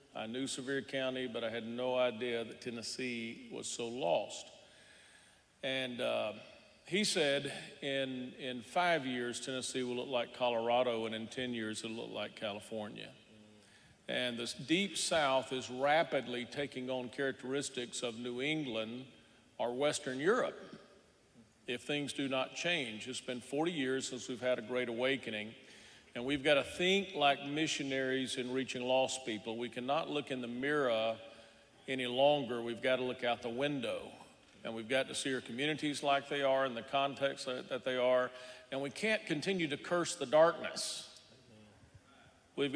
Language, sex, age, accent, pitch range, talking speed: English, male, 50-69, American, 120-140 Hz, 165 wpm